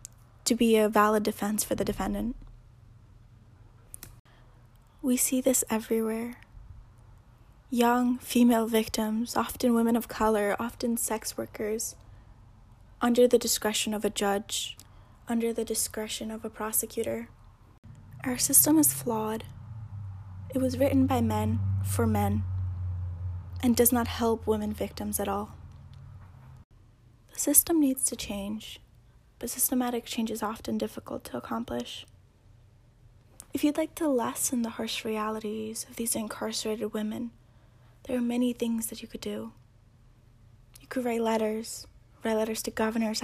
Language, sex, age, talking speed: English, female, 10-29, 130 wpm